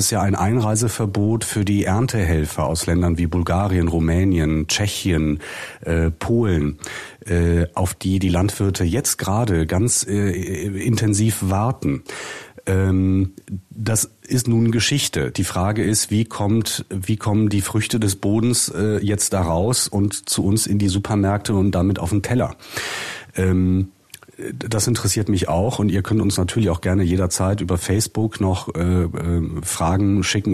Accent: German